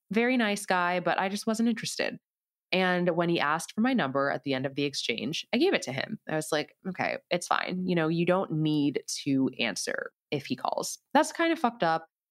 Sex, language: female, English